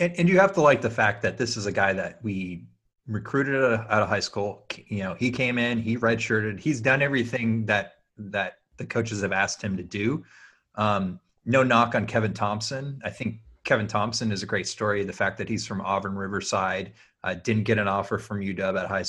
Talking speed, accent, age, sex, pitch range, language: 215 wpm, American, 30-49, male, 100-120 Hz, English